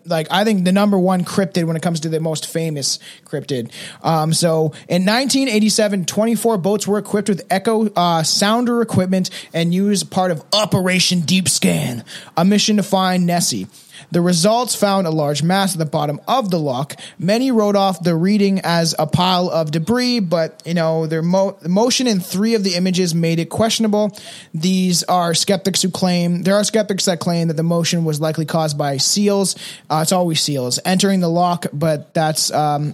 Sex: male